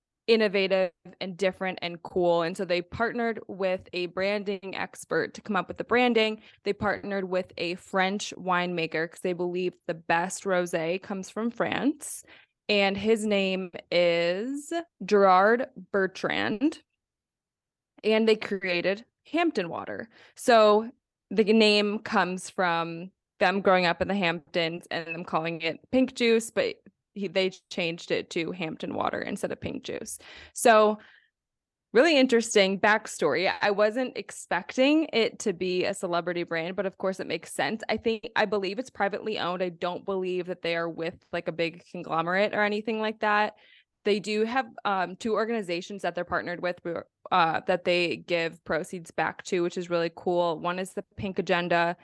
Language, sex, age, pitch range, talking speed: English, female, 20-39, 175-210 Hz, 160 wpm